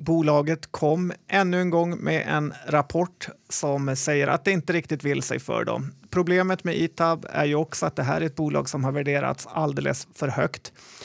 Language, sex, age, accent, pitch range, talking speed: Swedish, male, 30-49, native, 140-170 Hz, 195 wpm